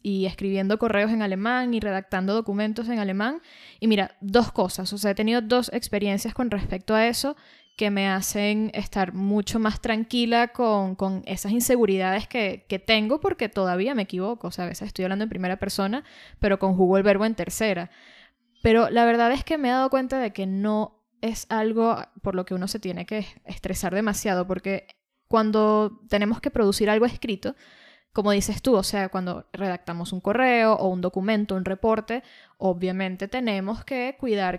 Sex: female